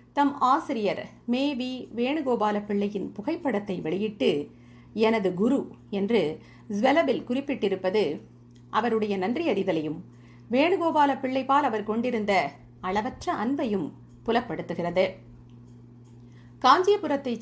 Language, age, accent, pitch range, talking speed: Tamil, 50-69, native, 185-270 Hz, 80 wpm